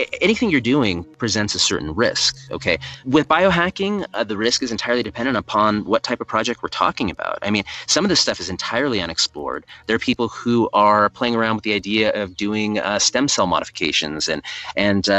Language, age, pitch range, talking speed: English, 30-49, 100-125 Hz, 200 wpm